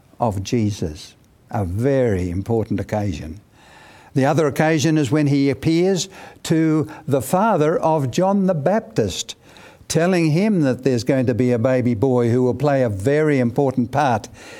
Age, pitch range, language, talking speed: 60-79, 115-160 Hz, English, 150 wpm